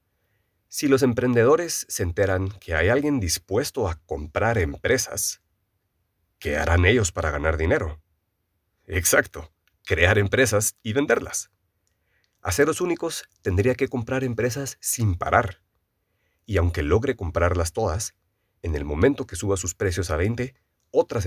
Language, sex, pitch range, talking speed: Spanish, male, 90-115 Hz, 130 wpm